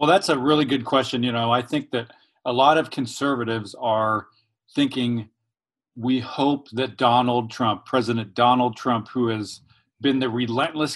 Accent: American